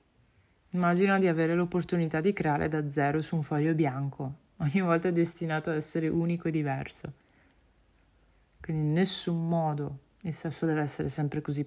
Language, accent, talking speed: Italian, native, 155 wpm